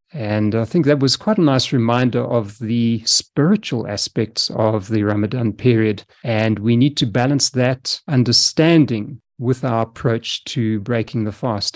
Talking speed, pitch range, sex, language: 160 wpm, 115-150 Hz, male, English